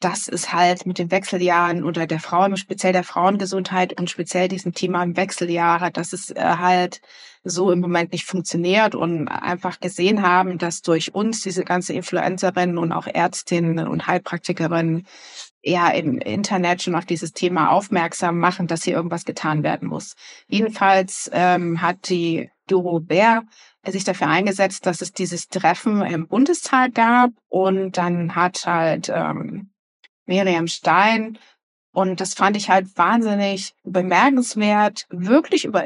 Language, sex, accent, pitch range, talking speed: German, female, German, 180-215 Hz, 145 wpm